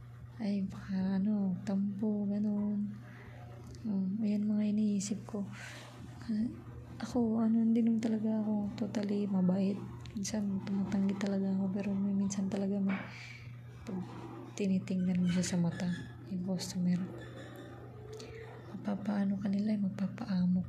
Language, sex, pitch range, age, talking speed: Filipino, female, 180-205 Hz, 20-39, 115 wpm